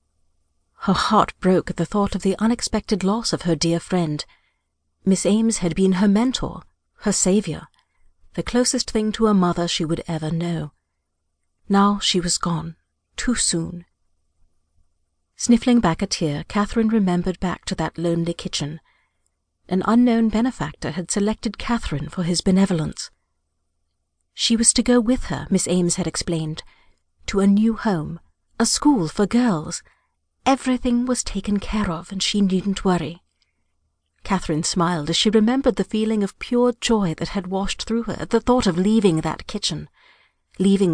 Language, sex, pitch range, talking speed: English, female, 150-210 Hz, 160 wpm